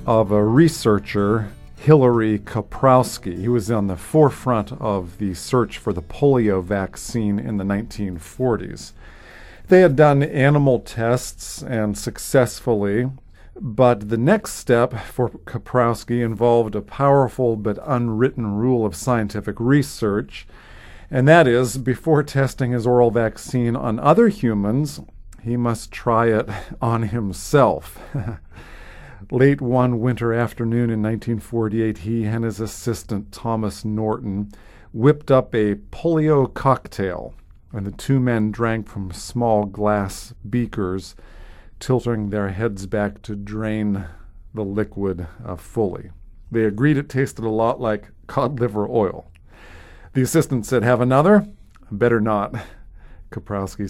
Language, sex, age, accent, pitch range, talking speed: English, male, 50-69, American, 100-125 Hz, 125 wpm